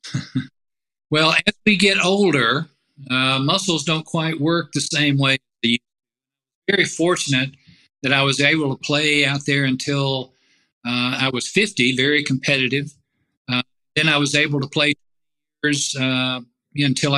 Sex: male